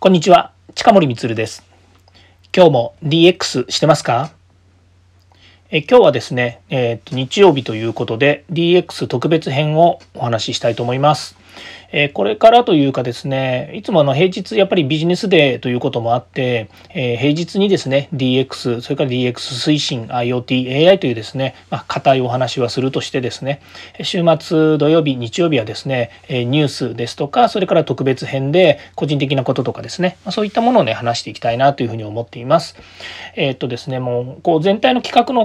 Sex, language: male, Japanese